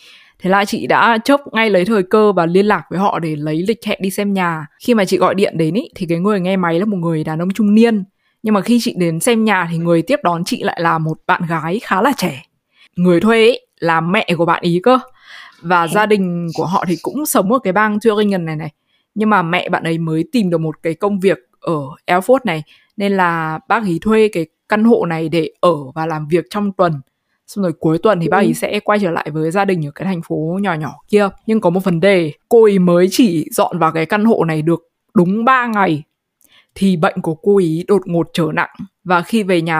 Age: 20-39